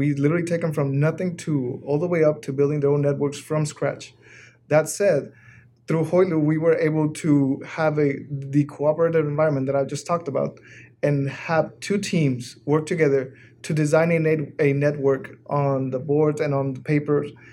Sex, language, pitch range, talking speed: male, English, 140-160 Hz, 190 wpm